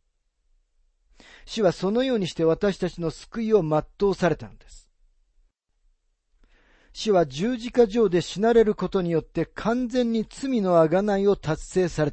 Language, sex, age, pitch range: Japanese, male, 50-69, 125-200 Hz